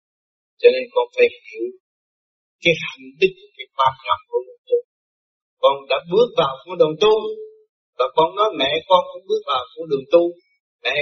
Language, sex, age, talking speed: Vietnamese, male, 30-49, 180 wpm